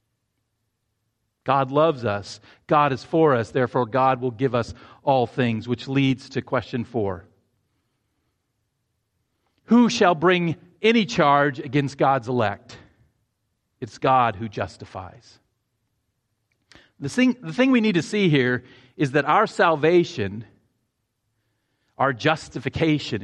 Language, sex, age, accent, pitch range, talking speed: English, male, 40-59, American, 110-150 Hz, 115 wpm